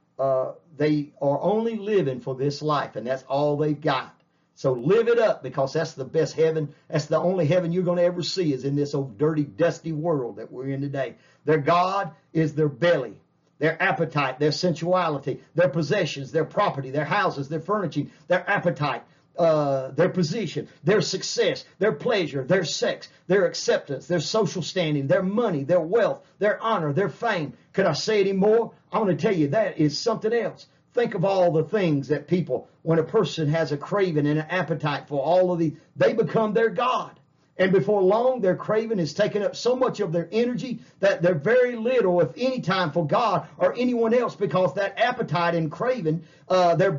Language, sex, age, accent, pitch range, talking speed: English, male, 50-69, American, 150-200 Hz, 195 wpm